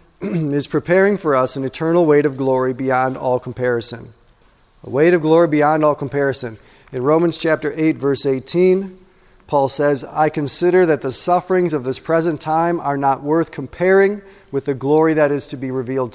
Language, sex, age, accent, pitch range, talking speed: English, male, 40-59, American, 140-170 Hz, 180 wpm